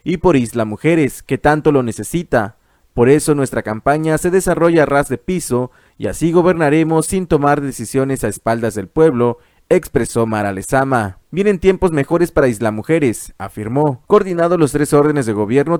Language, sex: Spanish, male